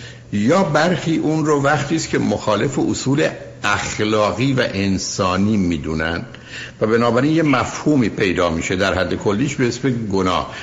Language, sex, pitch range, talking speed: Persian, male, 100-135 Hz, 145 wpm